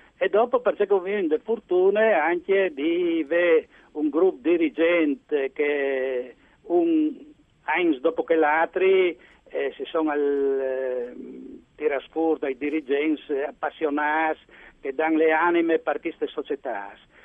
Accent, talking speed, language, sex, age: native, 120 wpm, Italian, male, 60-79